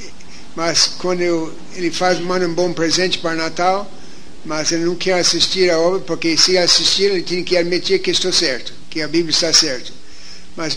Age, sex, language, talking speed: 60-79, male, Portuguese, 190 wpm